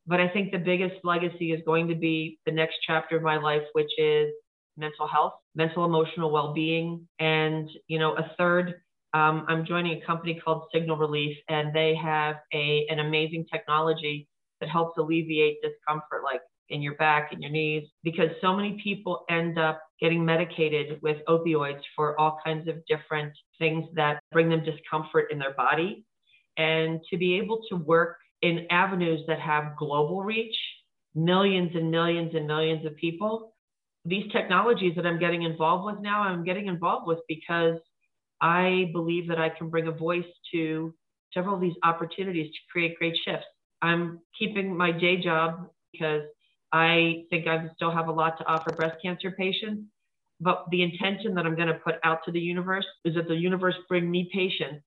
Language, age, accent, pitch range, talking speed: English, 40-59, American, 155-175 Hz, 175 wpm